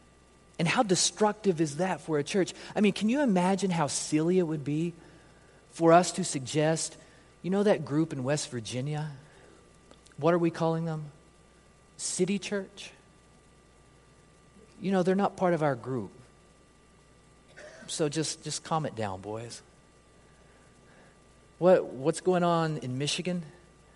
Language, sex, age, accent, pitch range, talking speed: English, male, 30-49, American, 145-190 Hz, 145 wpm